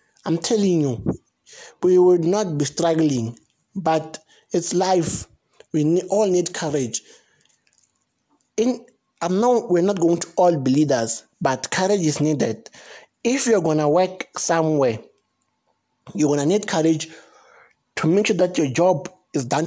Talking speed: 135 wpm